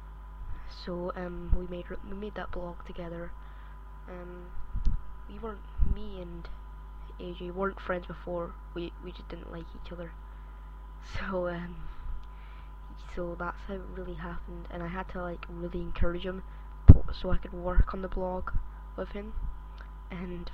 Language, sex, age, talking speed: English, female, 20-39, 150 wpm